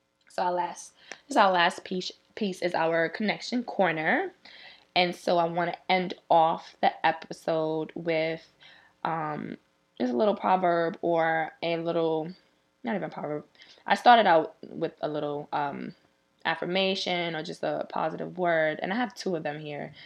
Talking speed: 165 wpm